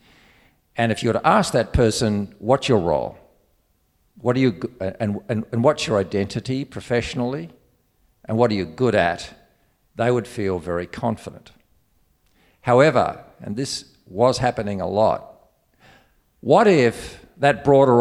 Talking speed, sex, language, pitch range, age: 145 wpm, male, English, 100-130 Hz, 50-69